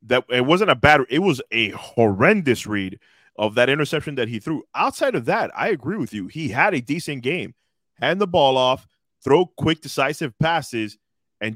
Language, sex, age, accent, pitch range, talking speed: English, male, 30-49, American, 105-135 Hz, 190 wpm